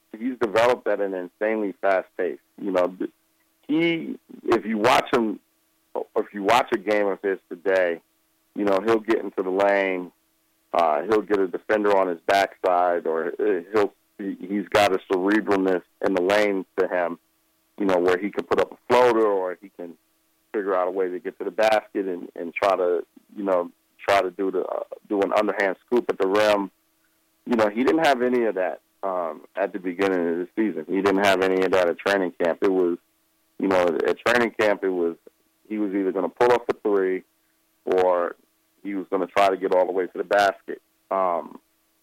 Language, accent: English, American